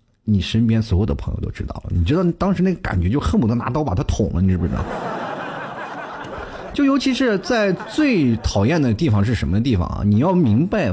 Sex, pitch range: male, 95-125 Hz